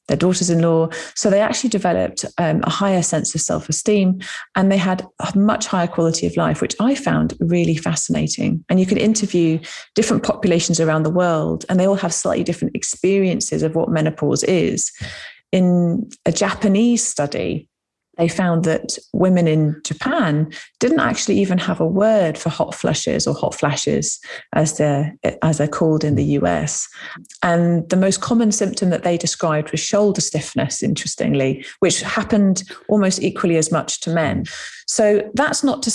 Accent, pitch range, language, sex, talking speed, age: British, 160-200 Hz, English, female, 165 wpm, 30-49